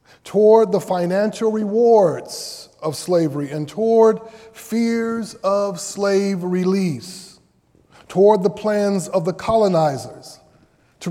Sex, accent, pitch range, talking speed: male, American, 155-210 Hz, 105 wpm